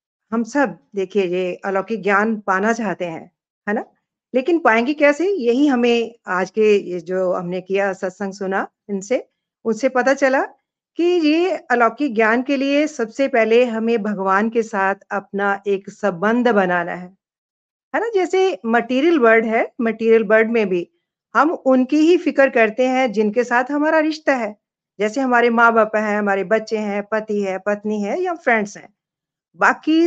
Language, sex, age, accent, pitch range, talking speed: Hindi, female, 50-69, native, 205-270 Hz, 160 wpm